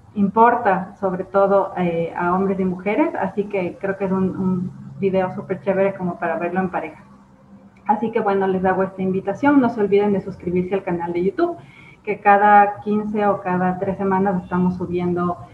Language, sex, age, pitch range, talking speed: Spanish, female, 30-49, 180-210 Hz, 185 wpm